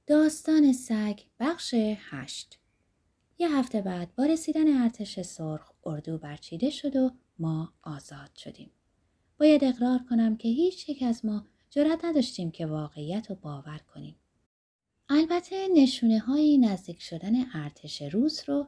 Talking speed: 130 wpm